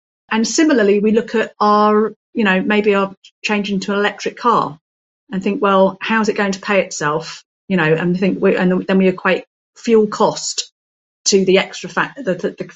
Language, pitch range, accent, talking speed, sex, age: English, 170-210 Hz, British, 200 wpm, female, 40-59